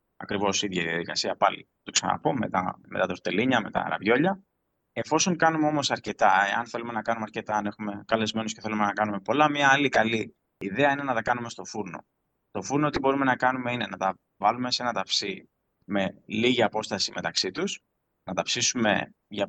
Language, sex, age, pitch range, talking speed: Greek, male, 20-39, 100-135 Hz, 200 wpm